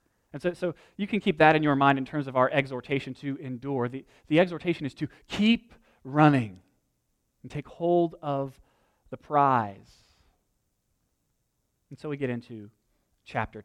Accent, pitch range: American, 125-160 Hz